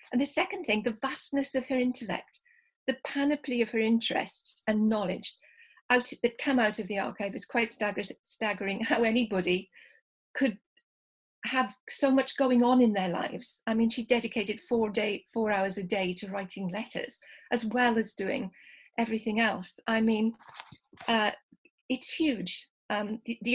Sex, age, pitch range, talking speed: female, 40-59, 205-250 Hz, 165 wpm